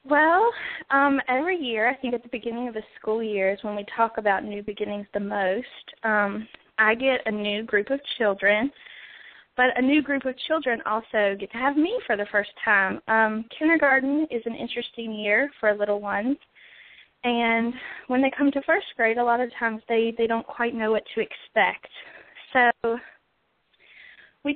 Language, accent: English, American